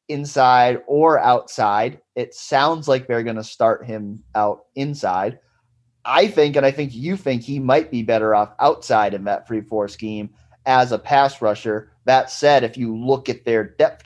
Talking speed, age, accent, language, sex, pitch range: 185 wpm, 30-49, American, English, male, 110-140 Hz